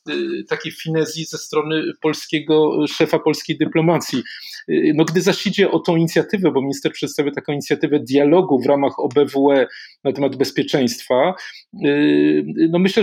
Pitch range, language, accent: 140-165 Hz, Polish, native